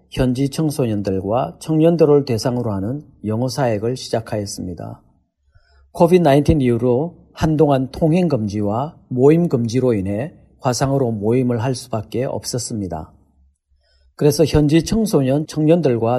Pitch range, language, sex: 110-150 Hz, Korean, male